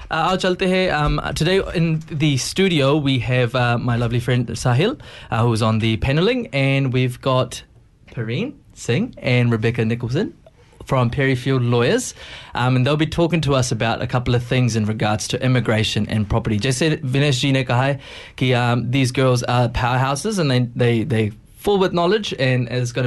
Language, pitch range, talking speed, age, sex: Hindi, 125-165 Hz, 180 wpm, 20-39, male